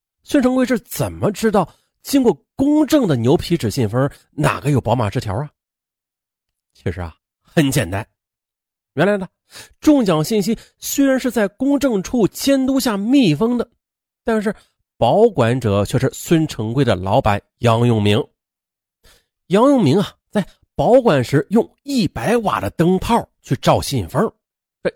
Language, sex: Chinese, male